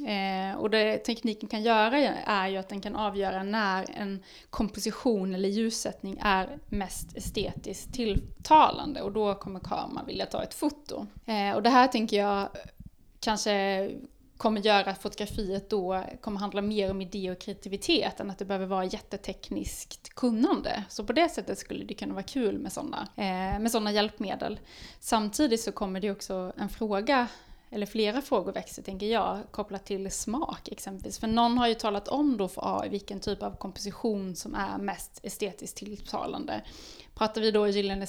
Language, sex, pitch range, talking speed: Swedish, female, 195-235 Hz, 170 wpm